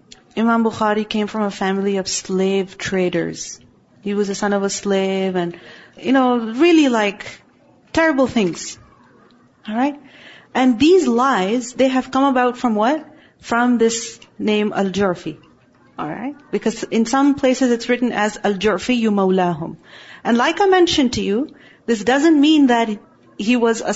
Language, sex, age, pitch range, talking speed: English, female, 40-59, 210-275 Hz, 155 wpm